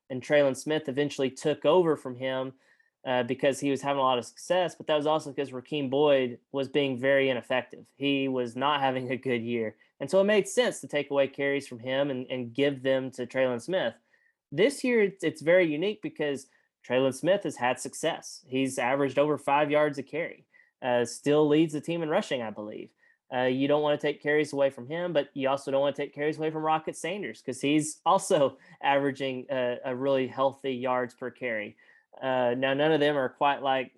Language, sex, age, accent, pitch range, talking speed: English, male, 20-39, American, 130-150 Hz, 215 wpm